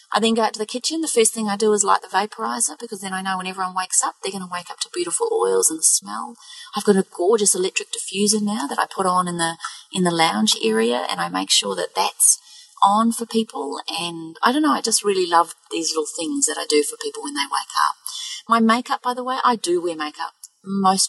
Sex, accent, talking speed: female, Australian, 255 wpm